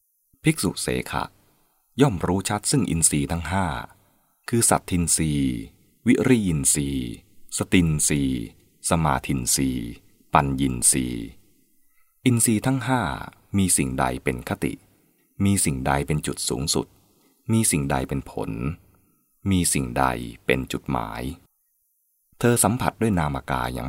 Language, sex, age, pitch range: English, male, 20-39, 65-100 Hz